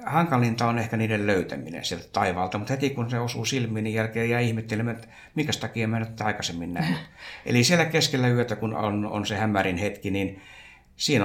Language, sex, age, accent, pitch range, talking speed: Finnish, male, 60-79, native, 95-115 Hz, 195 wpm